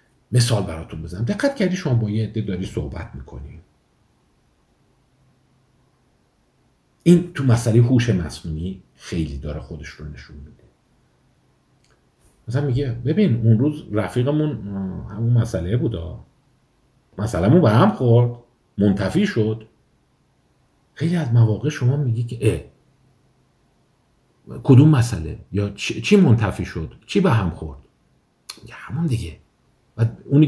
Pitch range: 95-130 Hz